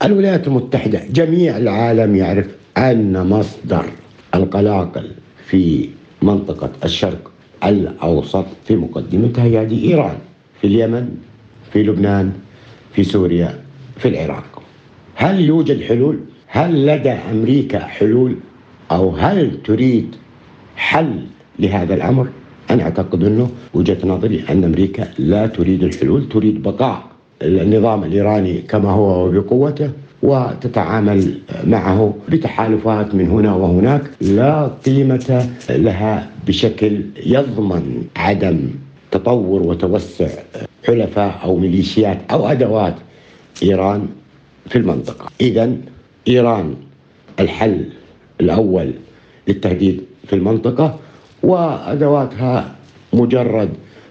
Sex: male